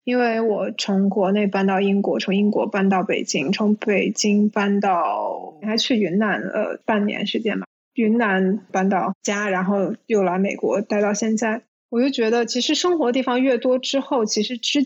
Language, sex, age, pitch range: Chinese, female, 20-39, 210-250 Hz